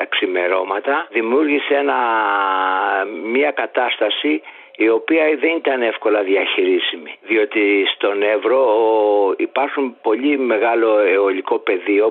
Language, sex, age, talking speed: Greek, male, 60-79, 95 wpm